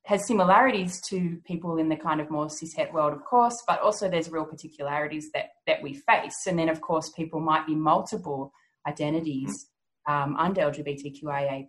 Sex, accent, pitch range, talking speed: female, Australian, 155-195 Hz, 175 wpm